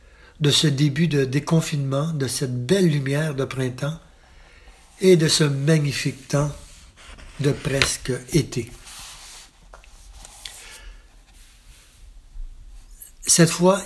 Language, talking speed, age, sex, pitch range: French, 90 wpm, 60-79, male, 125-150 Hz